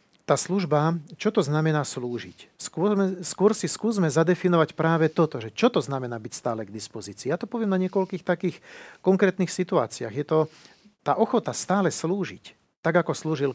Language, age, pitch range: Slovak, 40-59, 135-170 Hz